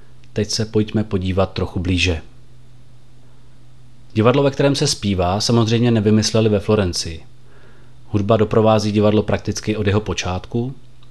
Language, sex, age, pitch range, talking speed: Czech, male, 30-49, 105-125 Hz, 120 wpm